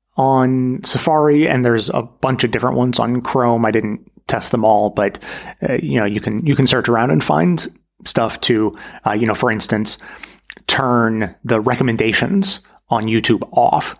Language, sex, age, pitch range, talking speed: English, male, 30-49, 115-140 Hz, 175 wpm